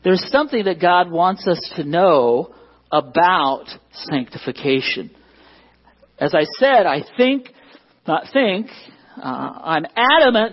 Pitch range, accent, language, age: 155-245 Hz, American, English, 50-69